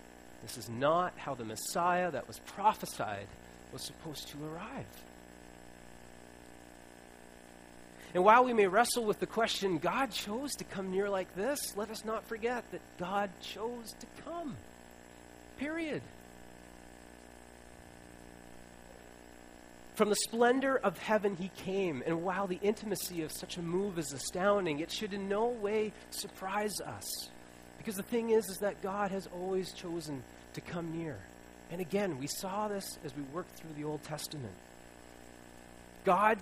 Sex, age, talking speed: male, 30-49, 145 wpm